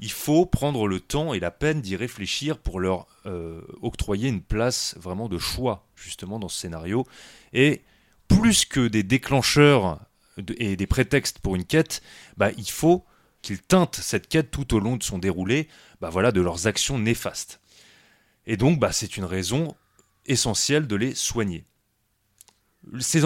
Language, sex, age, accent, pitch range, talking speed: French, male, 30-49, French, 95-135 Hz, 165 wpm